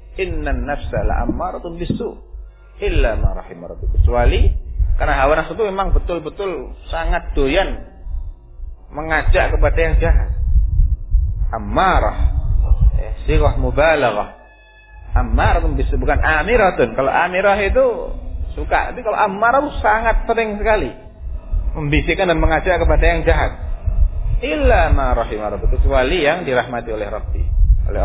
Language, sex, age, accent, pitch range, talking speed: Indonesian, male, 40-59, native, 80-115 Hz, 105 wpm